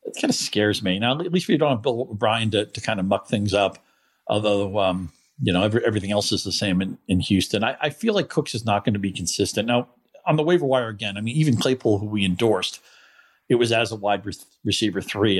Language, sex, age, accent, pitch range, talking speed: English, male, 40-59, American, 100-120 Hz, 255 wpm